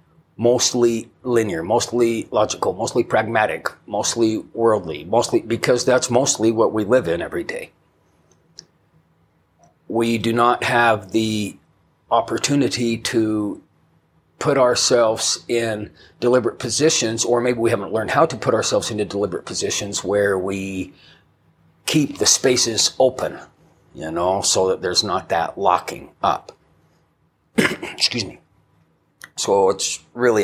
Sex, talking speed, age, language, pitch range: male, 120 wpm, 40-59, English, 105-125 Hz